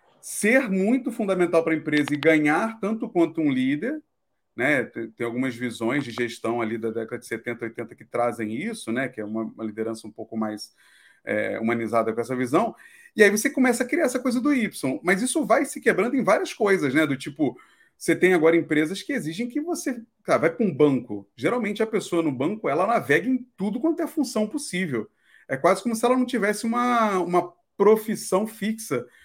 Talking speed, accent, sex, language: 205 wpm, Brazilian, male, Portuguese